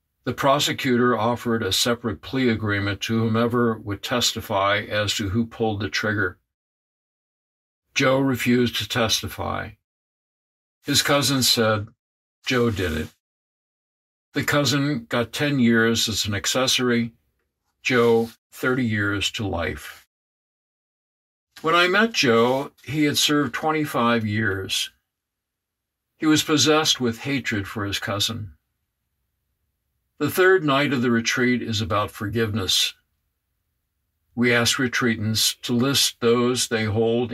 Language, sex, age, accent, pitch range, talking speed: English, male, 60-79, American, 95-125 Hz, 120 wpm